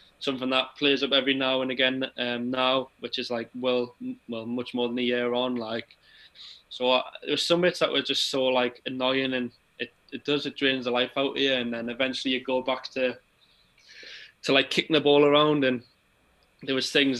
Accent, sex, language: British, male, English